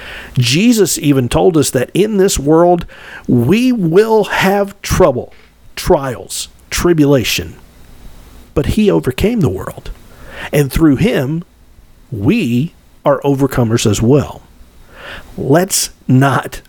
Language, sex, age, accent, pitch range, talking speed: English, male, 50-69, American, 120-165 Hz, 105 wpm